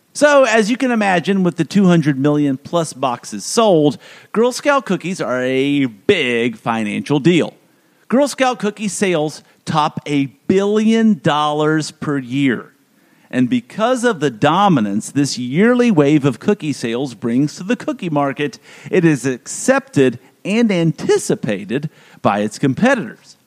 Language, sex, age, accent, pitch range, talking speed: English, male, 50-69, American, 135-225 Hz, 140 wpm